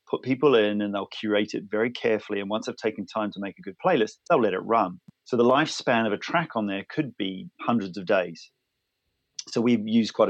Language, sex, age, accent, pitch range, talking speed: English, male, 40-59, British, 100-115 Hz, 235 wpm